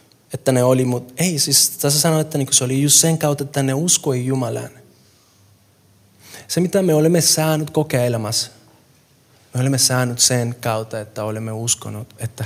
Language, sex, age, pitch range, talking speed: Finnish, male, 20-39, 110-140 Hz, 165 wpm